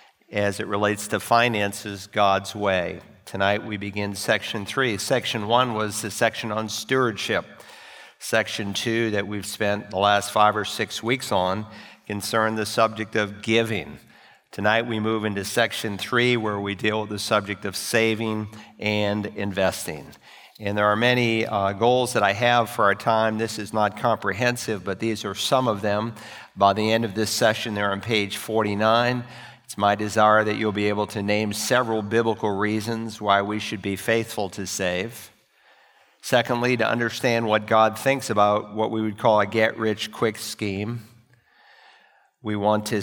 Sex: male